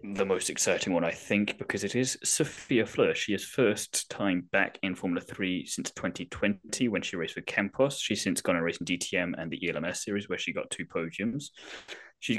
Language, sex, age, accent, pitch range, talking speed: English, male, 10-29, British, 90-110 Hz, 210 wpm